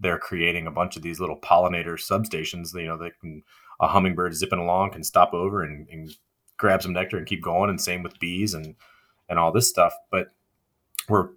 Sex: male